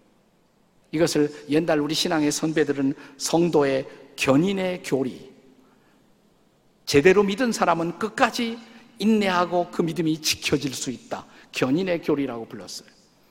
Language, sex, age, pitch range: Korean, male, 50-69, 155-210 Hz